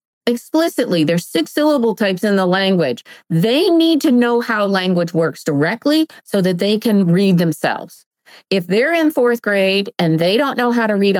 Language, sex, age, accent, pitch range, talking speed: English, female, 40-59, American, 170-230 Hz, 180 wpm